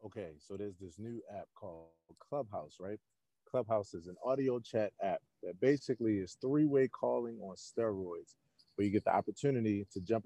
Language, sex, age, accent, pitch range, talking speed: English, male, 30-49, American, 95-115 Hz, 170 wpm